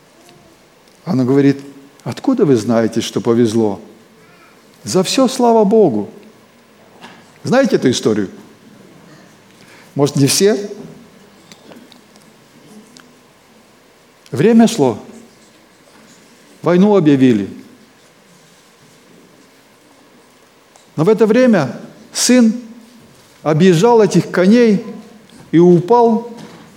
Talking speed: 70 wpm